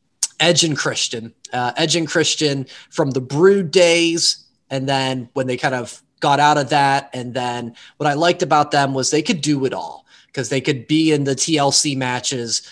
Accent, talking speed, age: American, 200 wpm, 20-39